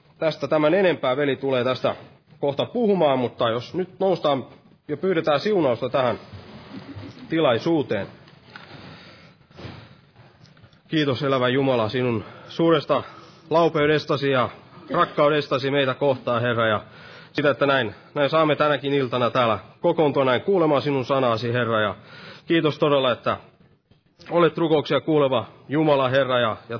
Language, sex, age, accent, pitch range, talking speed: Finnish, male, 30-49, native, 135-160 Hz, 120 wpm